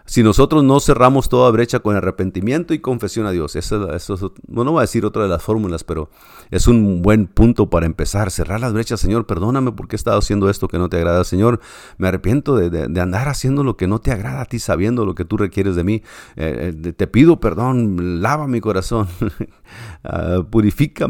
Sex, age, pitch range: male, 50-69, 85-115 Hz